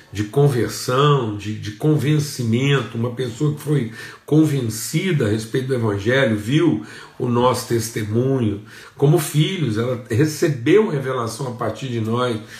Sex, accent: male, Brazilian